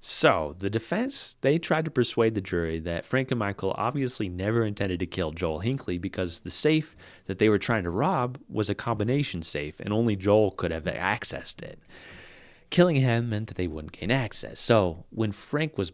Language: English